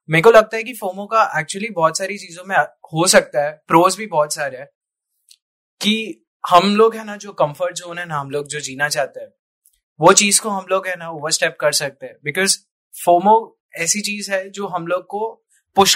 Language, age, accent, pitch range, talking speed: Hindi, 20-39, native, 160-200 Hz, 215 wpm